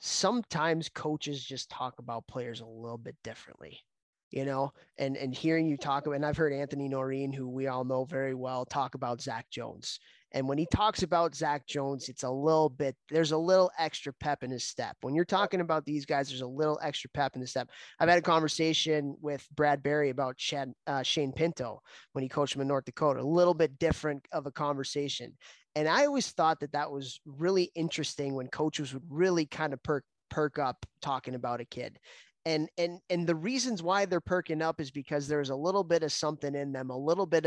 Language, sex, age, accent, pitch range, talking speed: English, male, 20-39, American, 135-155 Hz, 220 wpm